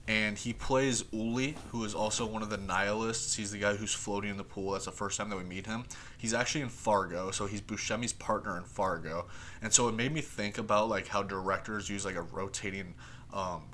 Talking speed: 225 wpm